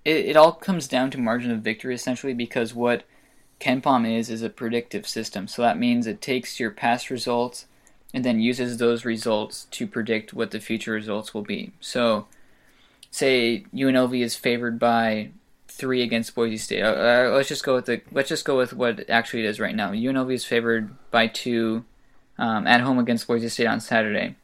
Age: 20-39